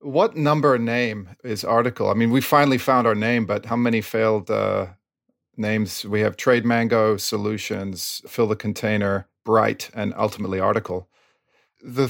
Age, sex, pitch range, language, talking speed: 40-59, male, 100-125 Hz, English, 155 wpm